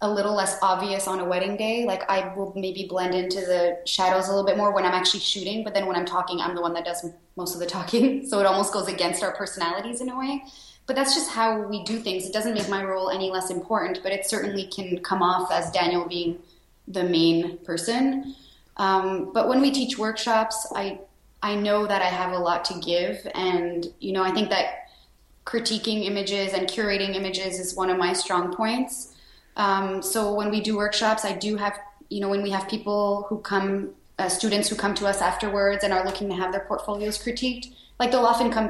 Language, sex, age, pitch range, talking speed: English, female, 20-39, 180-210 Hz, 225 wpm